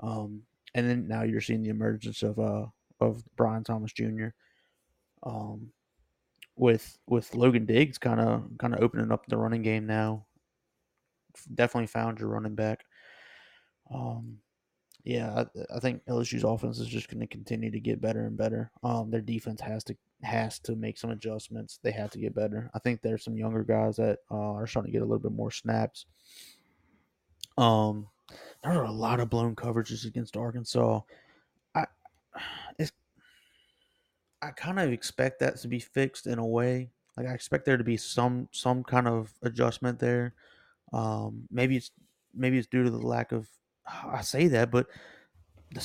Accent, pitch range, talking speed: American, 110-125 Hz, 175 wpm